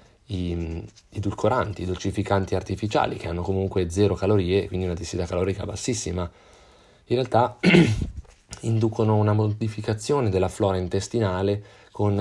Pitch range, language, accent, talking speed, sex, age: 95-110 Hz, Italian, native, 125 wpm, male, 30-49